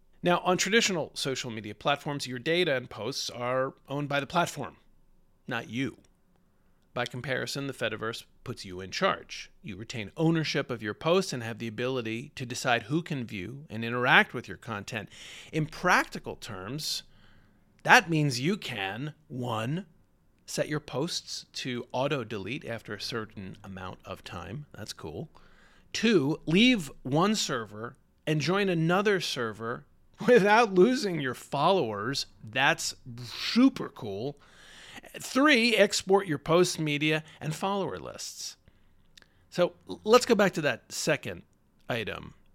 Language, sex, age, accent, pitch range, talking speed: English, male, 40-59, American, 115-180 Hz, 135 wpm